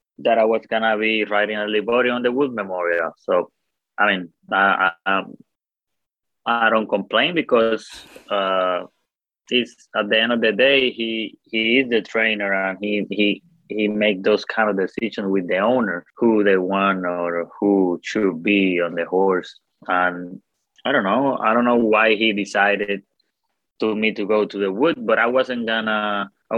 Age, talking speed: 20-39, 170 wpm